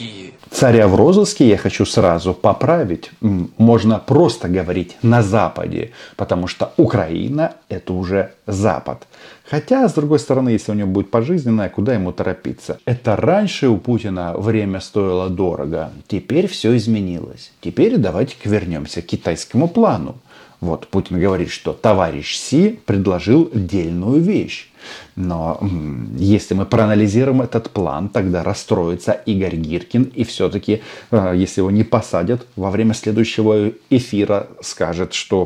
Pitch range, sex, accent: 95-140 Hz, male, native